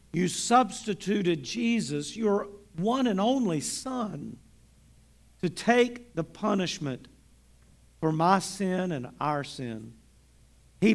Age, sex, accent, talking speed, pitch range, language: 50-69, male, American, 105 wpm, 150-205 Hz, English